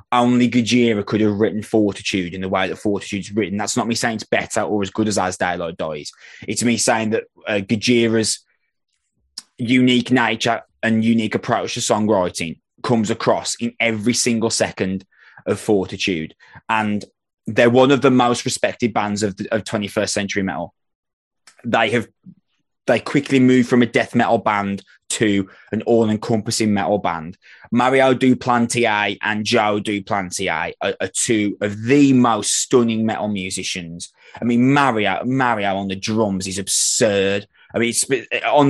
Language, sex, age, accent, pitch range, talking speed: English, male, 20-39, British, 105-125 Hz, 160 wpm